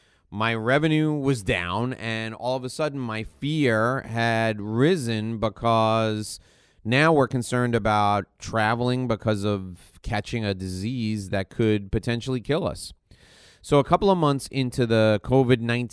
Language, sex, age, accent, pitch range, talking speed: English, male, 30-49, American, 110-145 Hz, 140 wpm